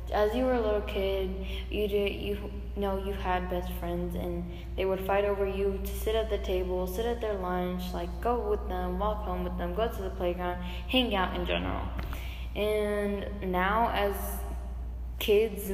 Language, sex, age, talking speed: English, female, 10-29, 190 wpm